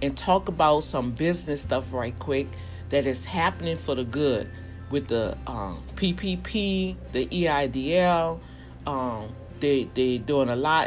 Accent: American